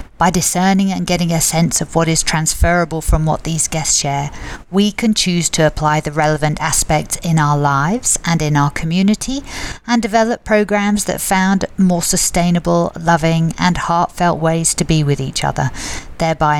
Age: 50-69